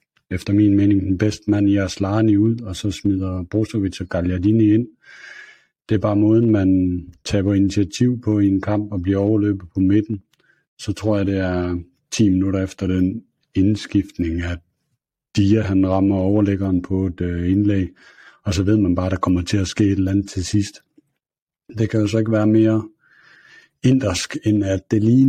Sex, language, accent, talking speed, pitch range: male, Danish, native, 185 wpm, 95-110 Hz